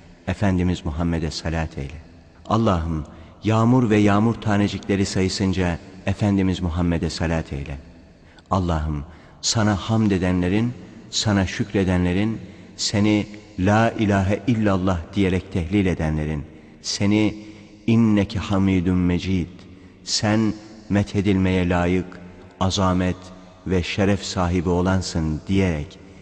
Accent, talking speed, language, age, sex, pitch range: native, 90 wpm, Turkish, 60-79, male, 85-100 Hz